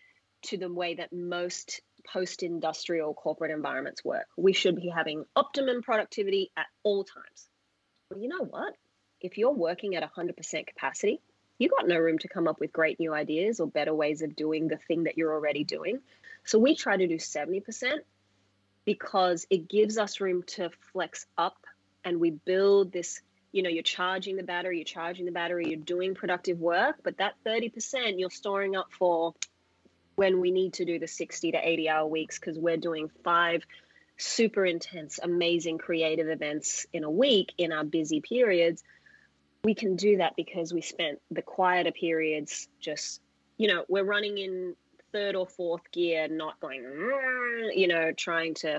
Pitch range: 160-200 Hz